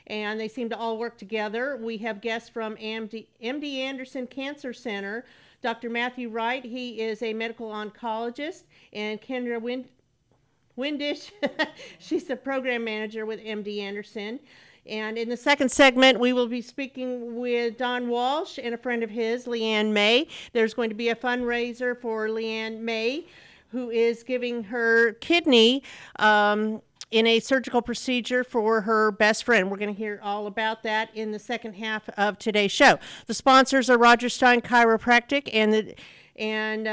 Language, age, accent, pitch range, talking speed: English, 50-69, American, 220-260 Hz, 160 wpm